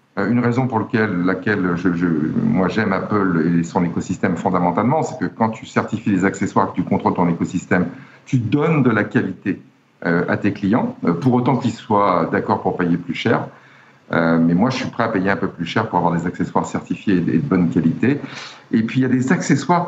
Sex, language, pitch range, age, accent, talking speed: male, French, 95-130 Hz, 60-79, French, 210 wpm